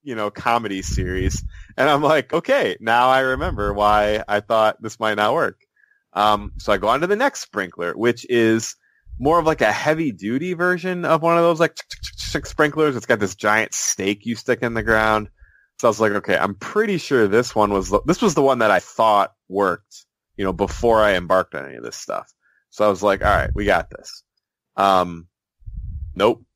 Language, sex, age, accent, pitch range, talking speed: English, male, 20-39, American, 95-120 Hz, 205 wpm